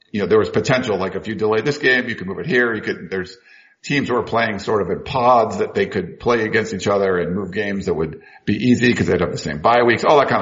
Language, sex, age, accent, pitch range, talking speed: English, male, 50-69, American, 100-130 Hz, 295 wpm